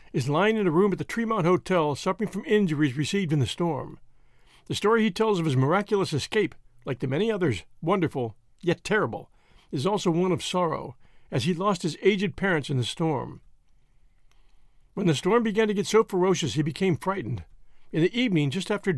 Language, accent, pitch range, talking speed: English, American, 150-205 Hz, 195 wpm